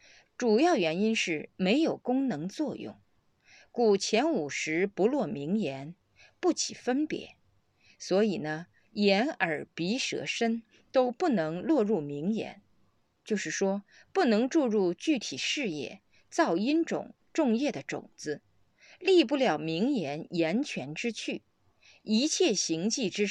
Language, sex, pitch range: Chinese, female, 190-285 Hz